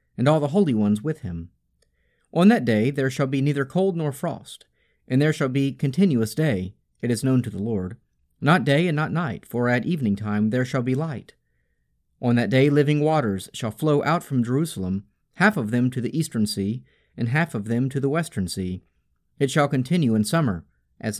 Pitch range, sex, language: 95-150 Hz, male, English